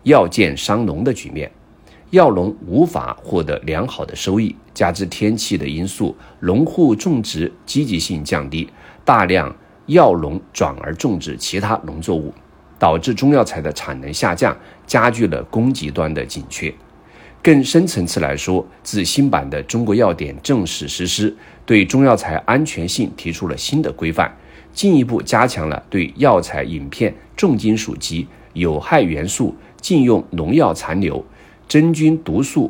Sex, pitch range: male, 80-110 Hz